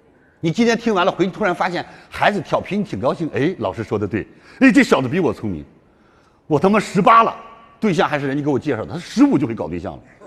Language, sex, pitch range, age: Chinese, male, 135-210 Hz, 50-69